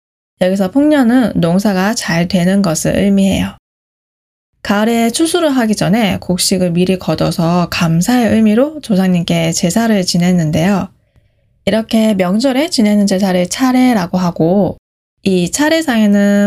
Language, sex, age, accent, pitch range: Korean, female, 10-29, native, 185-255 Hz